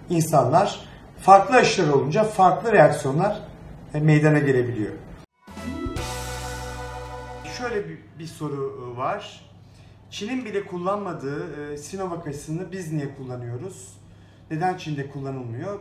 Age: 40-59